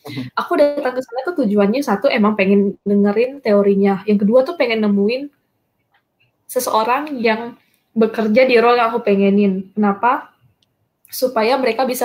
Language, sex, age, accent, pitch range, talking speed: Indonesian, female, 10-29, native, 200-250 Hz, 140 wpm